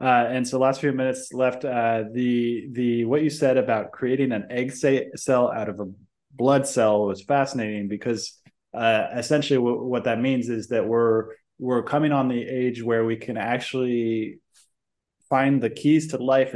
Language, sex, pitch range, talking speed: English, male, 105-125 Hz, 180 wpm